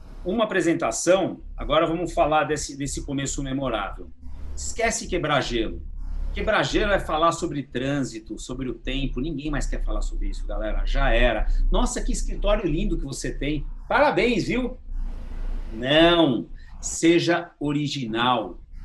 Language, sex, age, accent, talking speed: Portuguese, male, 50-69, Brazilian, 135 wpm